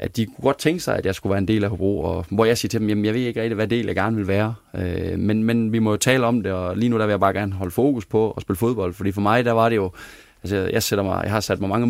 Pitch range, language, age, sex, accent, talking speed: 95-115 Hz, Danish, 20-39, male, native, 355 wpm